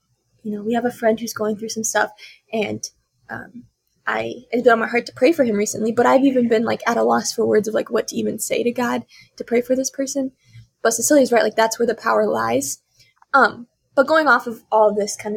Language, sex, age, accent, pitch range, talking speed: English, female, 10-29, American, 220-265 Hz, 245 wpm